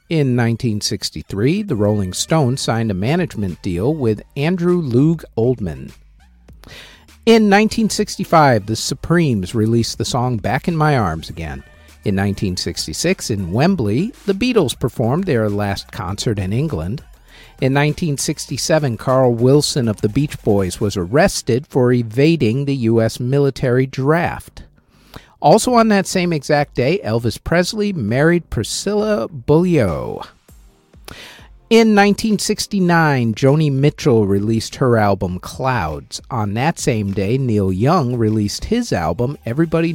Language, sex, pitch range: English, male, 105-160 Hz